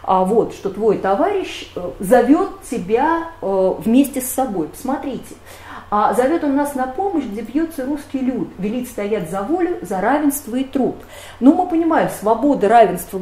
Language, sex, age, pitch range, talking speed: Russian, female, 40-59, 200-295 Hz, 150 wpm